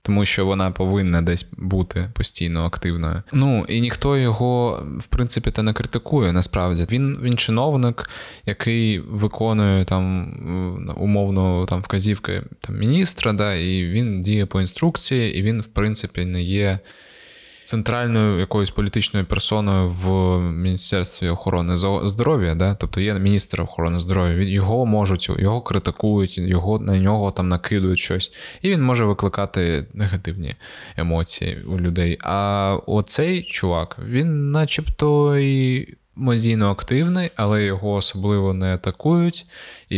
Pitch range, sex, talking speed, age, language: 95-125 Hz, male, 130 wpm, 20-39, Ukrainian